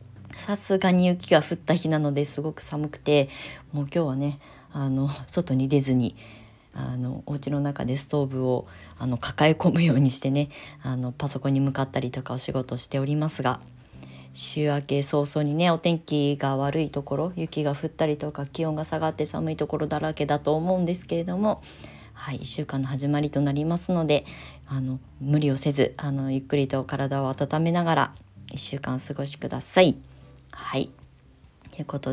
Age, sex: 20-39, female